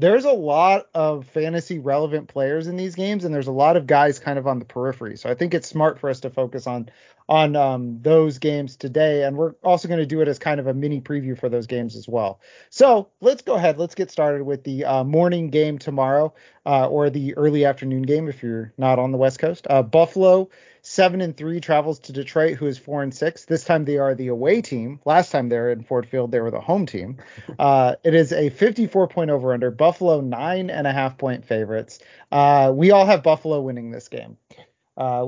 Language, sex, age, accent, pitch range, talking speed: English, male, 30-49, American, 130-170 Hz, 225 wpm